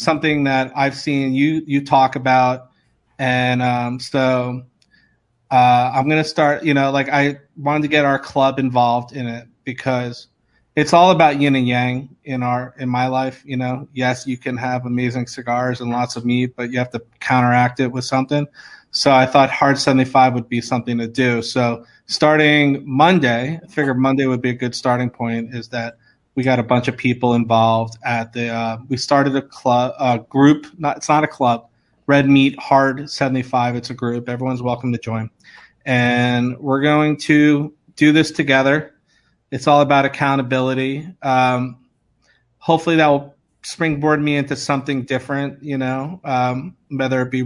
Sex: male